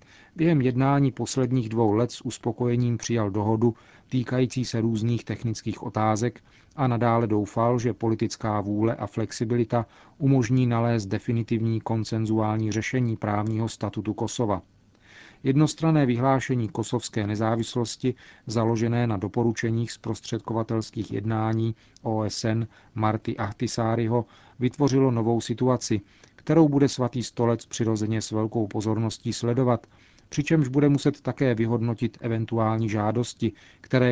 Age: 40-59